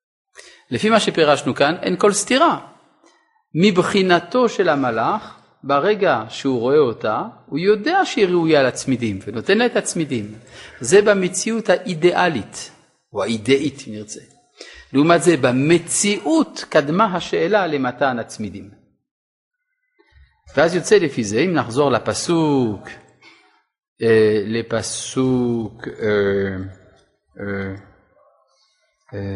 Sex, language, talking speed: male, Hebrew, 95 wpm